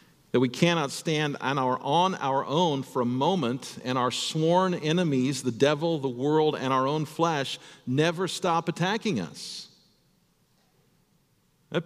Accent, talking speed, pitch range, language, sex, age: American, 140 wpm, 130-180 Hz, English, male, 50-69